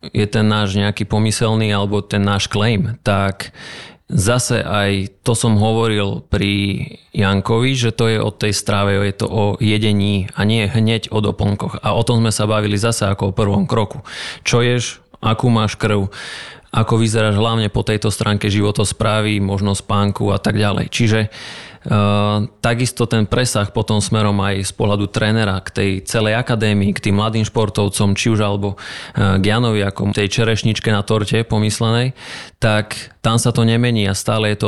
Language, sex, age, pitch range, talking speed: Slovak, male, 30-49, 100-115 Hz, 175 wpm